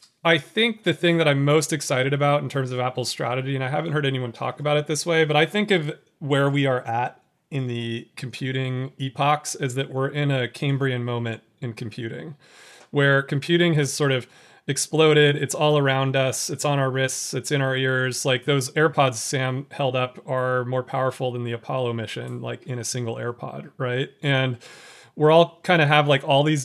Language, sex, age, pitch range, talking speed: English, male, 30-49, 130-150 Hz, 205 wpm